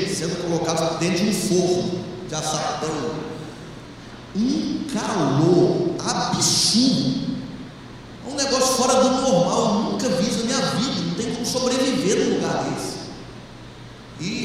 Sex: male